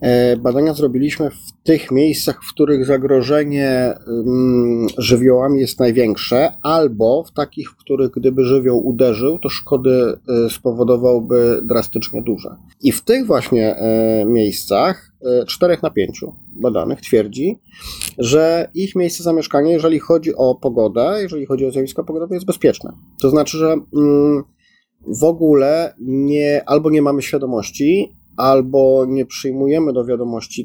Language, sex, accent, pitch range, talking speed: Polish, male, native, 125-150 Hz, 125 wpm